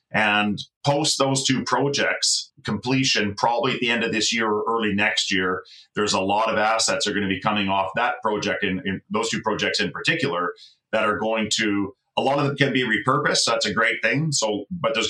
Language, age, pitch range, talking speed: English, 30-49, 100-135 Hz, 225 wpm